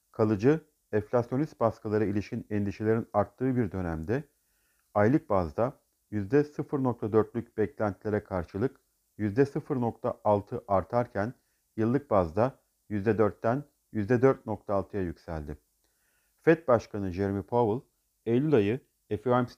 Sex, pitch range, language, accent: male, 100-135 Hz, Turkish, native